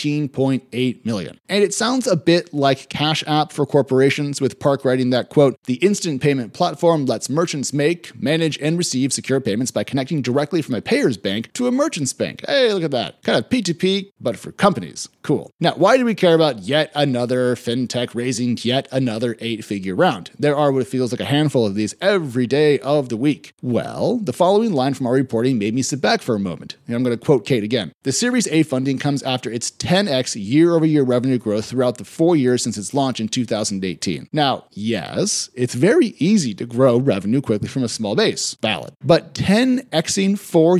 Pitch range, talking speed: 120-170 Hz, 200 wpm